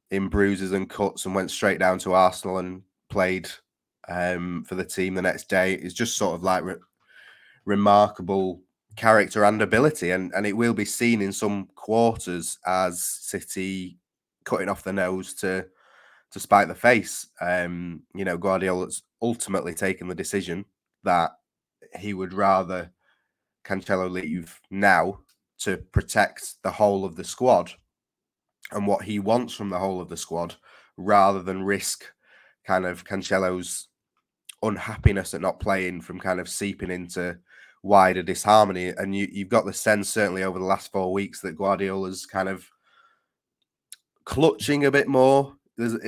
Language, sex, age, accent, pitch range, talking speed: English, male, 20-39, British, 90-105 Hz, 155 wpm